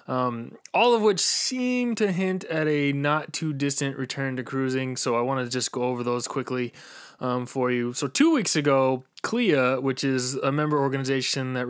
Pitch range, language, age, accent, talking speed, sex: 120-145 Hz, English, 20-39, American, 185 wpm, male